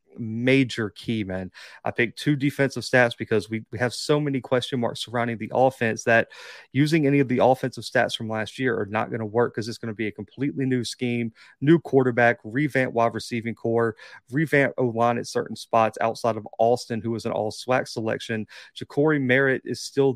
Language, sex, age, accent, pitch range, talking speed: English, male, 30-49, American, 110-130 Hz, 200 wpm